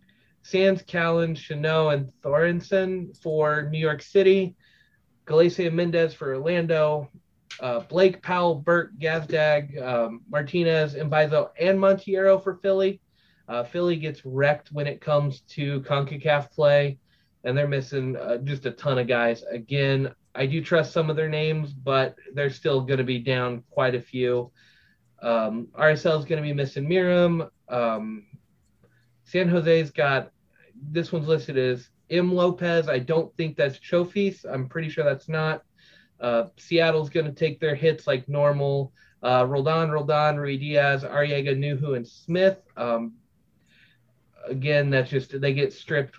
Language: English